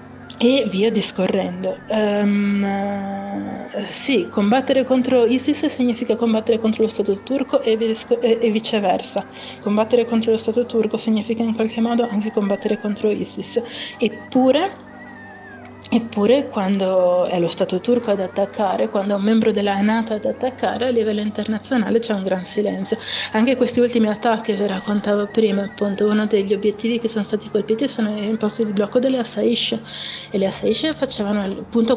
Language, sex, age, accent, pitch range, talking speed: Italian, female, 30-49, native, 200-230 Hz, 155 wpm